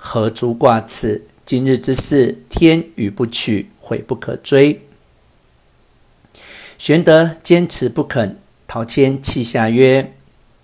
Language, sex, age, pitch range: Chinese, male, 50-69, 110-135 Hz